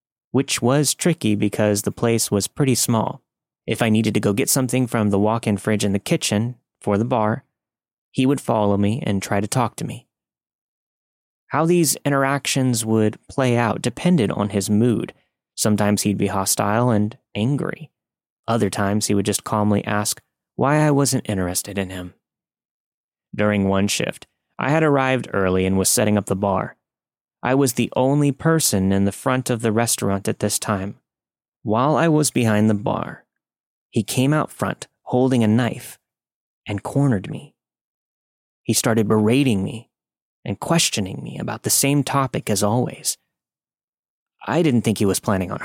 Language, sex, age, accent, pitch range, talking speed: English, male, 30-49, American, 100-130 Hz, 170 wpm